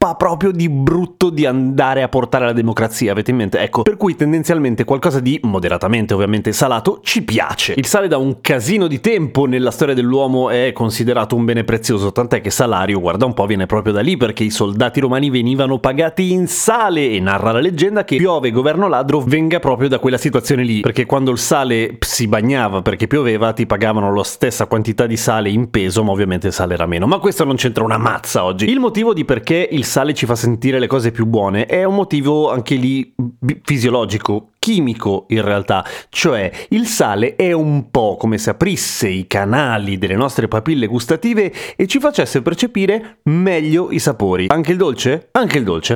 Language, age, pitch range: Italian, 30-49, 115-150 Hz